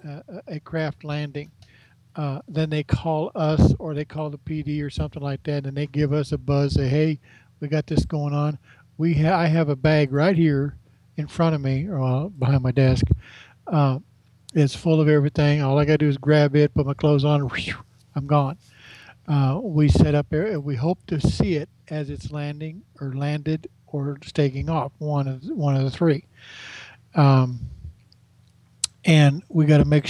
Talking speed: 195 wpm